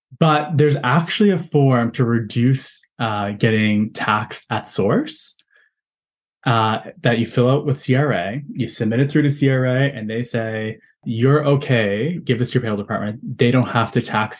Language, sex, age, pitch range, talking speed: English, male, 20-39, 110-140 Hz, 170 wpm